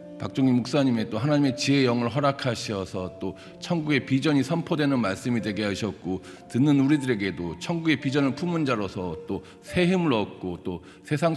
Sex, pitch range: male, 95-120 Hz